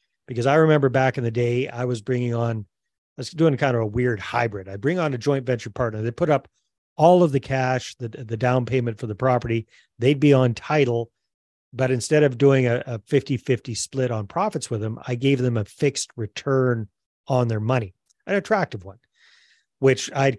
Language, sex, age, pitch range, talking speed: English, male, 40-59, 115-140 Hz, 205 wpm